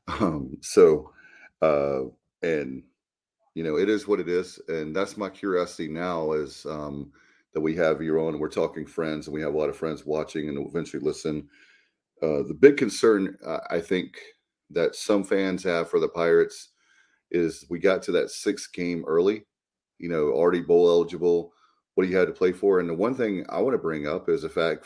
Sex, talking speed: male, 200 wpm